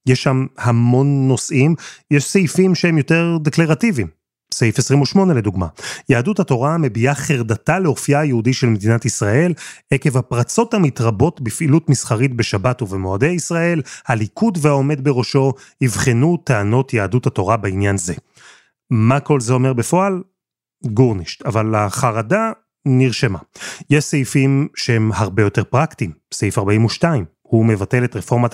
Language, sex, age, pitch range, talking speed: Hebrew, male, 30-49, 115-150 Hz, 125 wpm